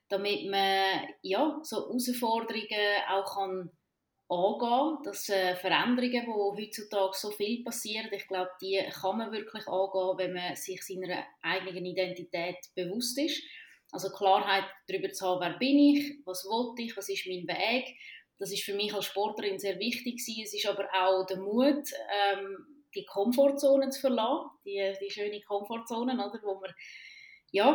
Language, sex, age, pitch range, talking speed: German, female, 20-39, 190-235 Hz, 160 wpm